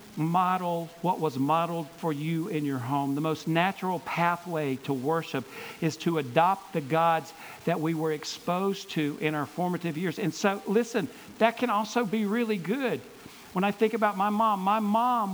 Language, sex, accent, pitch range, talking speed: English, male, American, 150-210 Hz, 180 wpm